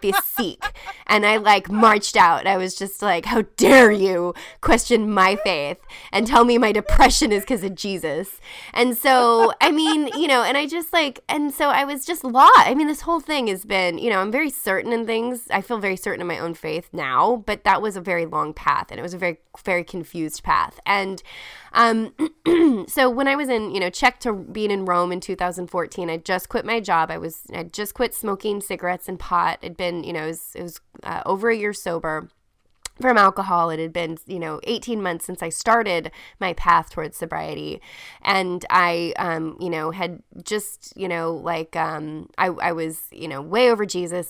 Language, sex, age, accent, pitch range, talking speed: English, female, 20-39, American, 175-235 Hz, 215 wpm